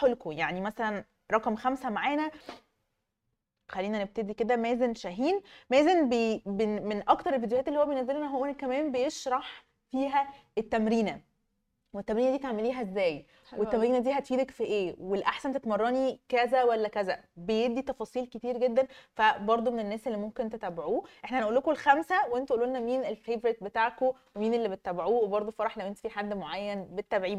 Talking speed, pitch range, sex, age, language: 150 wpm, 210-260 Hz, female, 20-39, Arabic